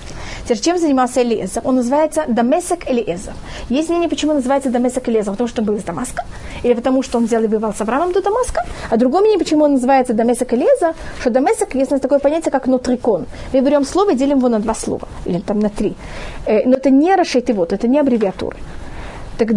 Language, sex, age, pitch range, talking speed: Russian, female, 30-49, 235-295 Hz, 210 wpm